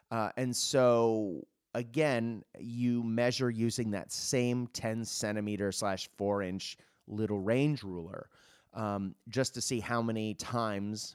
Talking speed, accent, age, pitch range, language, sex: 110 wpm, American, 30-49, 100-125 Hz, English, male